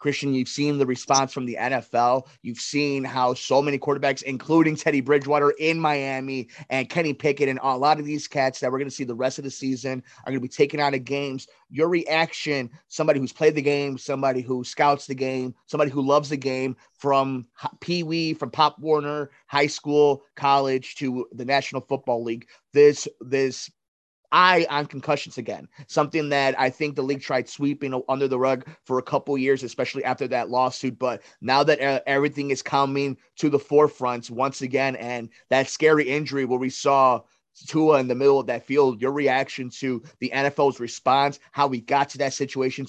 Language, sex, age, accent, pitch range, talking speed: English, male, 30-49, American, 130-145 Hz, 195 wpm